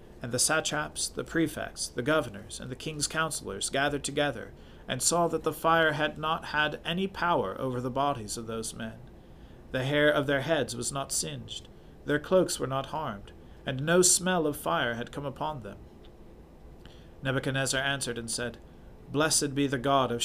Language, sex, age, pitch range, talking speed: English, male, 40-59, 120-155 Hz, 180 wpm